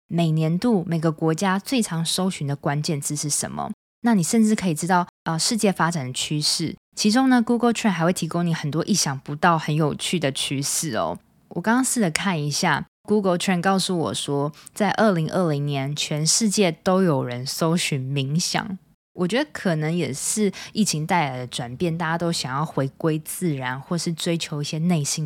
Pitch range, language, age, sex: 155-200 Hz, Chinese, 20-39, female